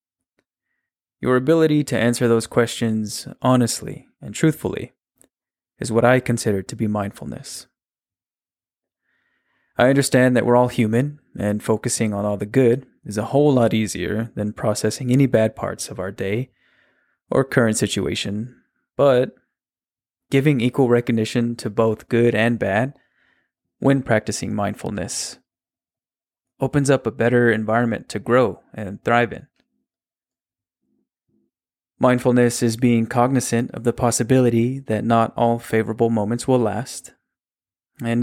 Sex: male